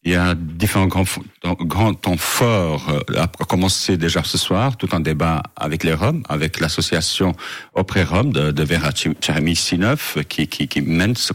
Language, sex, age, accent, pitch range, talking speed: French, male, 50-69, French, 80-100 Hz, 170 wpm